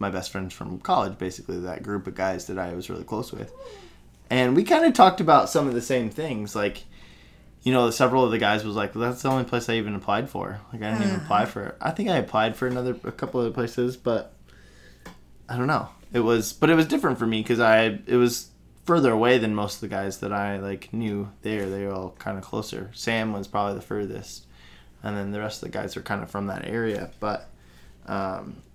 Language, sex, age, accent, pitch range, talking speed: English, male, 20-39, American, 95-115 Hz, 240 wpm